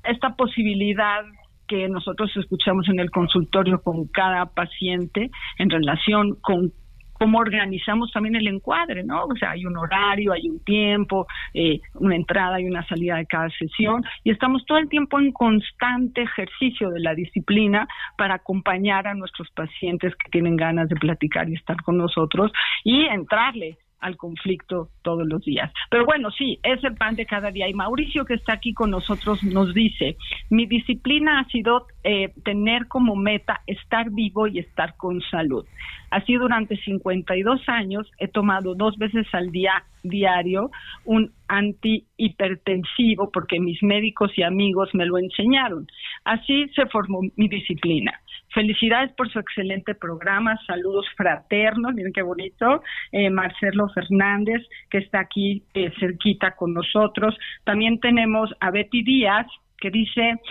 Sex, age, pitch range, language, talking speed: female, 50-69, 185-225 Hz, Spanish, 155 wpm